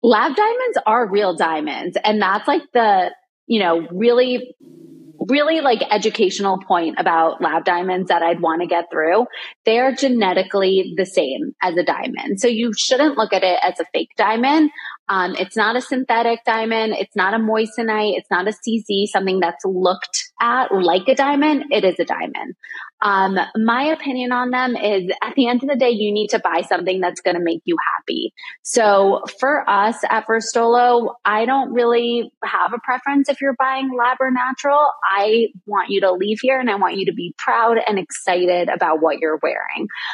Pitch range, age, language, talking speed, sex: 190-250 Hz, 20-39, English, 190 wpm, female